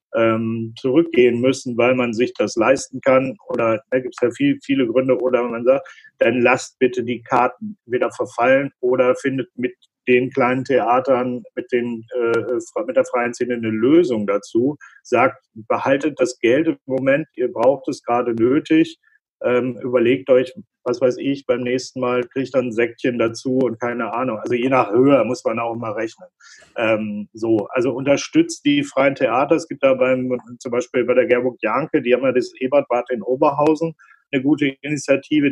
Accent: German